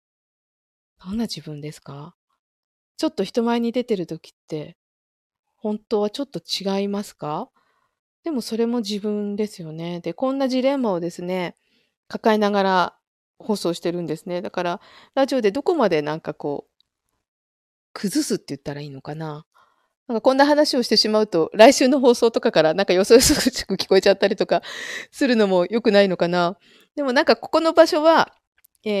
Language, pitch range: Japanese, 170-235 Hz